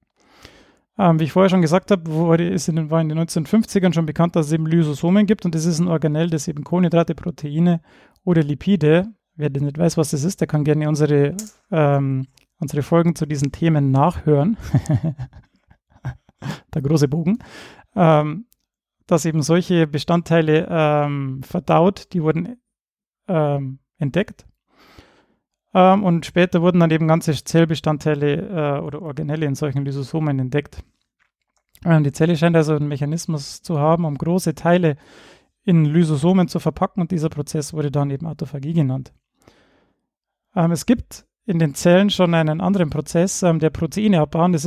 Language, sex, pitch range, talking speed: German, male, 150-180 Hz, 155 wpm